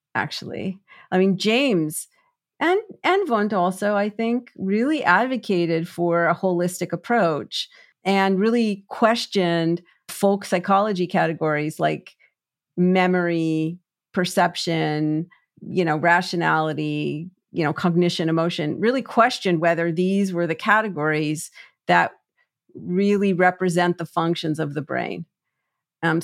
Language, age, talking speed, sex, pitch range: English, 40-59, 110 wpm, female, 170-210 Hz